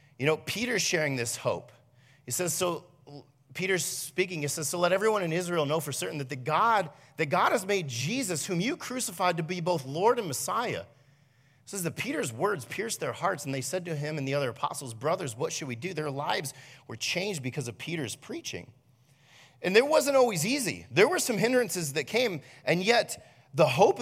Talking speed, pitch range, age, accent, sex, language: 205 wpm, 135-190 Hz, 40-59, American, male, English